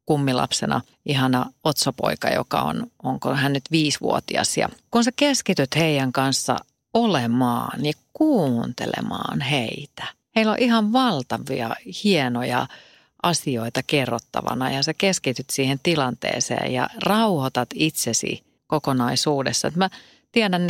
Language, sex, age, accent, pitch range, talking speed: Finnish, female, 40-59, native, 130-155 Hz, 110 wpm